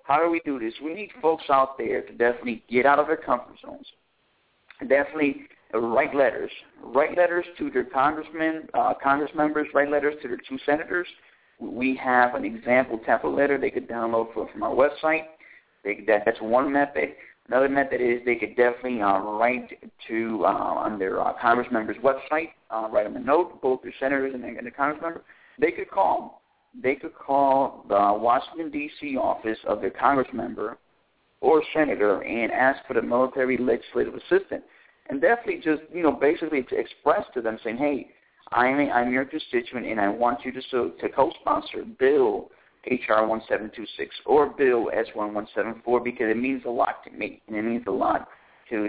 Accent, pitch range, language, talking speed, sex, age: American, 120-155 Hz, English, 185 wpm, male, 50-69